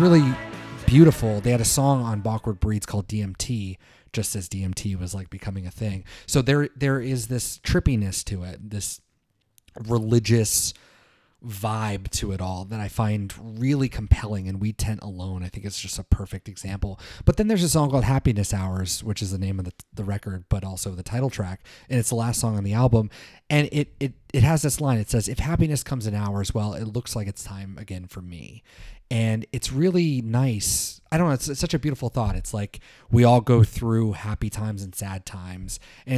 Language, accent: English, American